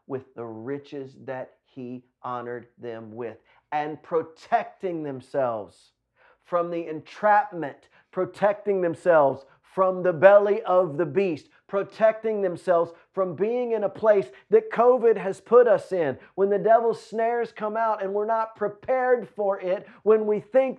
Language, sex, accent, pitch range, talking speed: English, male, American, 155-210 Hz, 145 wpm